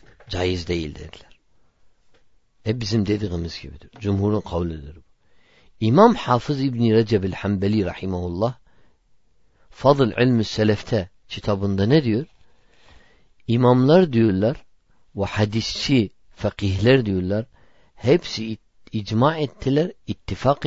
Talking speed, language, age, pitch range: 95 wpm, Turkish, 50-69, 100-130 Hz